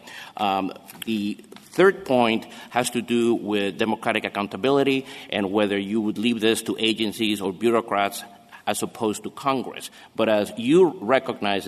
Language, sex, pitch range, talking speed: English, male, 105-130 Hz, 145 wpm